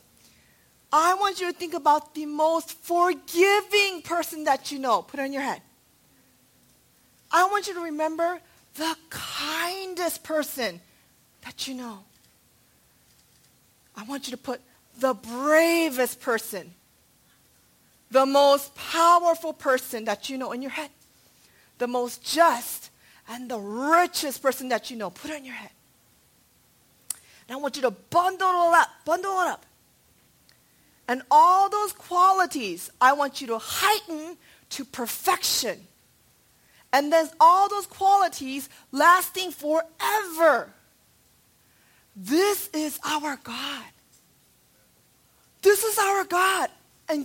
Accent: American